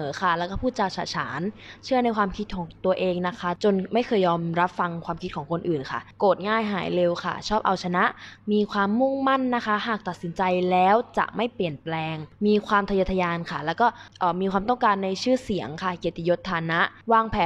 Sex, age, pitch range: female, 20-39, 175-215 Hz